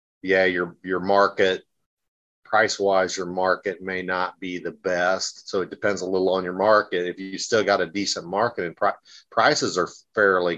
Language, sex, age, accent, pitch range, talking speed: English, male, 40-59, American, 95-115 Hz, 180 wpm